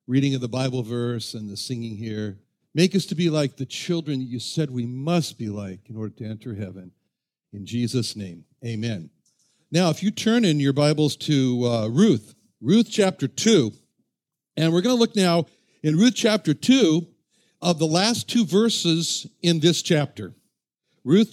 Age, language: 60-79, English